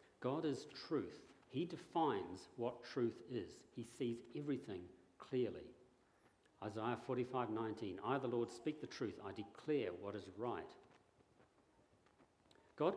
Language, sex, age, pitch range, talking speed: English, male, 50-69, 110-130 Hz, 125 wpm